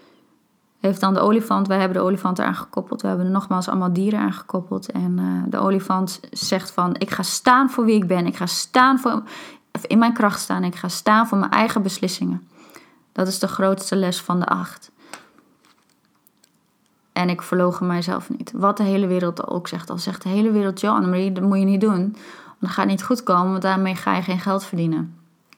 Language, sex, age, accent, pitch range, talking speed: Dutch, female, 20-39, Dutch, 185-225 Hz, 215 wpm